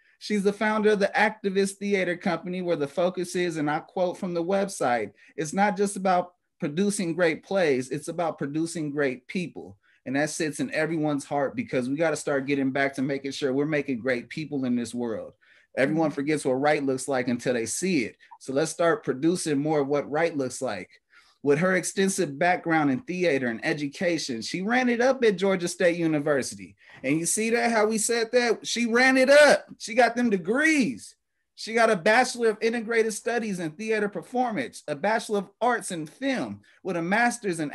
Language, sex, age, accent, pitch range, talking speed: English, male, 30-49, American, 150-225 Hz, 200 wpm